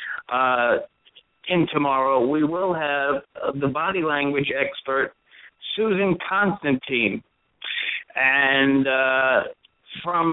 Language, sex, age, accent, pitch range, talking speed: English, male, 60-79, American, 140-170 Hz, 95 wpm